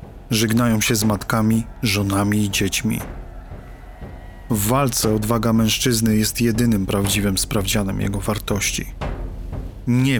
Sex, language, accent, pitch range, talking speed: male, Polish, native, 100-125 Hz, 105 wpm